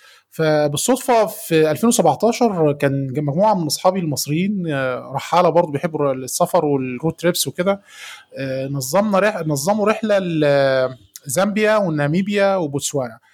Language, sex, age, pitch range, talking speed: Arabic, male, 20-39, 145-195 Hz, 100 wpm